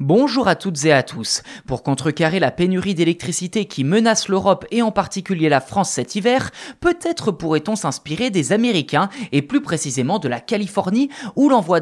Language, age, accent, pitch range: French, 20-39, French, 150-215 Hz